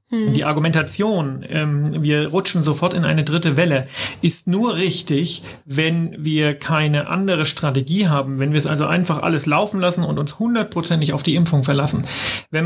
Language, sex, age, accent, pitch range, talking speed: German, male, 40-59, German, 150-175 Hz, 165 wpm